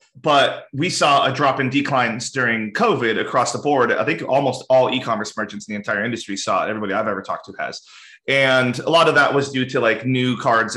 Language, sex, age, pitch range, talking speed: English, male, 30-49, 115-140 Hz, 230 wpm